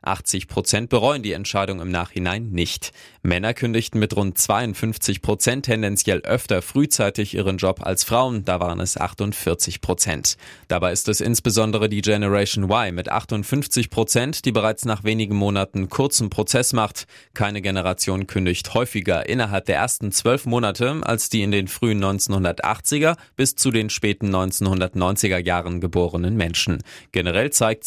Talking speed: 140 wpm